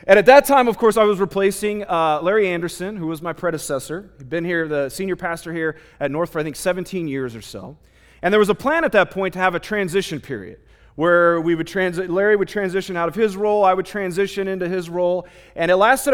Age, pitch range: 30-49, 150-195 Hz